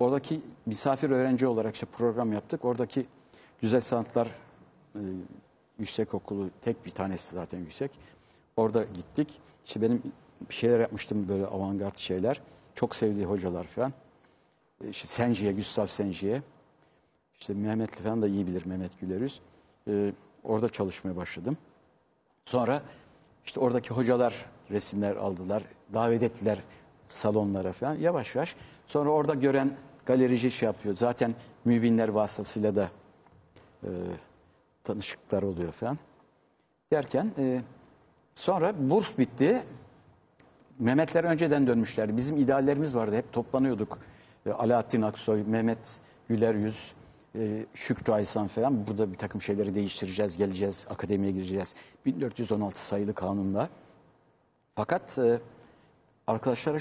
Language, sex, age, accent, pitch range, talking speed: Turkish, male, 60-79, native, 100-125 Hz, 115 wpm